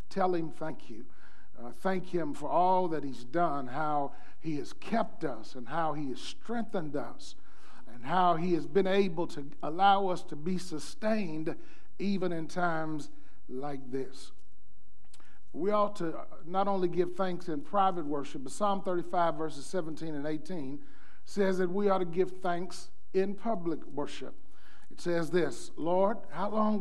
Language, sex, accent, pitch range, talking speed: English, male, American, 155-195 Hz, 165 wpm